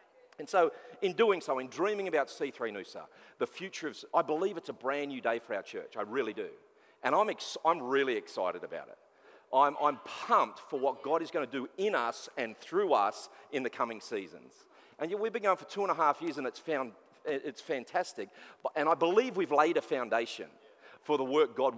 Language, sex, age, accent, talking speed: English, male, 40-59, Australian, 225 wpm